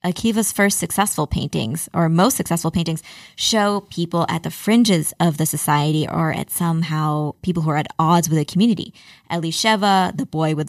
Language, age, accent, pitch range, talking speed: English, 20-39, American, 165-200 Hz, 175 wpm